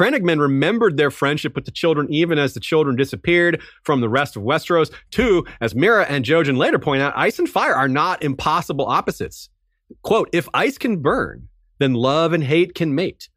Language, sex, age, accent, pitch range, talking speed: English, male, 30-49, American, 120-165 Hz, 195 wpm